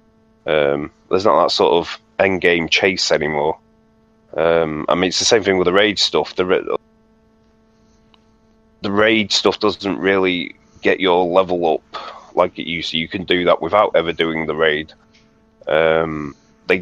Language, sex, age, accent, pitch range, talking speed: English, male, 30-49, British, 85-110 Hz, 170 wpm